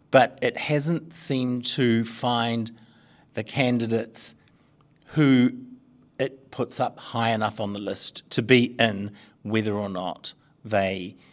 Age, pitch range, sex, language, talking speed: 50-69, 105-125 Hz, male, English, 125 wpm